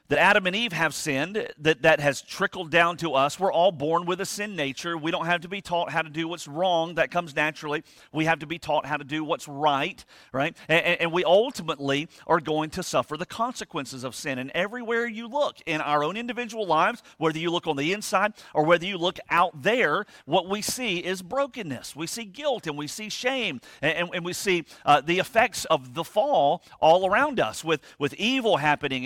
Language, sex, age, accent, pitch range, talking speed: English, male, 40-59, American, 155-205 Hz, 225 wpm